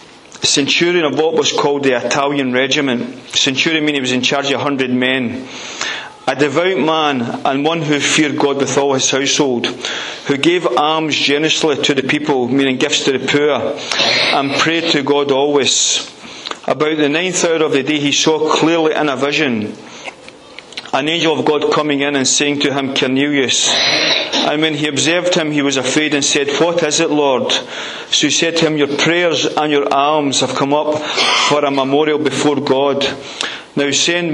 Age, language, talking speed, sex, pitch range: 30-49, English, 185 wpm, male, 140-155 Hz